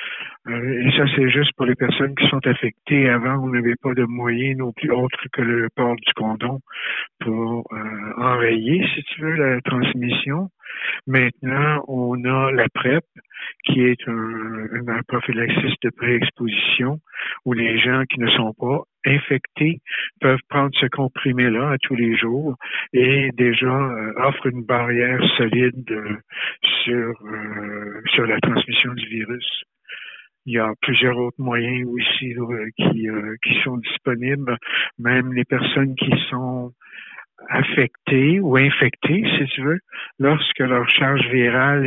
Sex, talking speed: male, 150 wpm